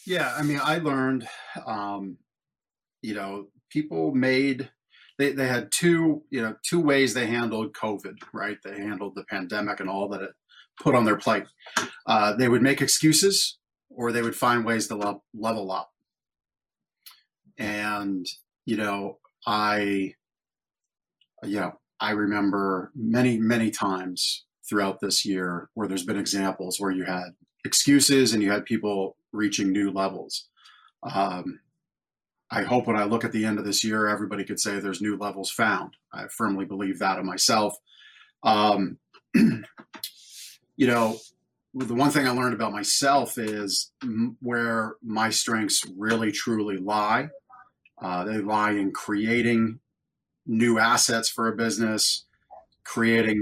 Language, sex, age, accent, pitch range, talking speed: English, male, 30-49, American, 100-120 Hz, 145 wpm